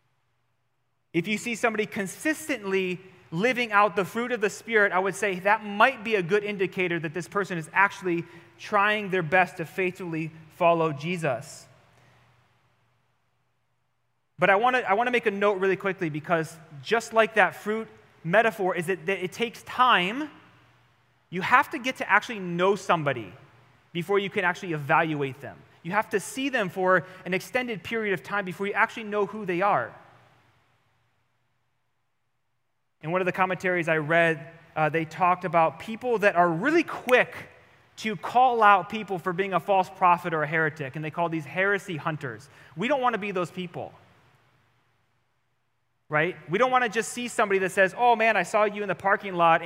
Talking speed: 175 wpm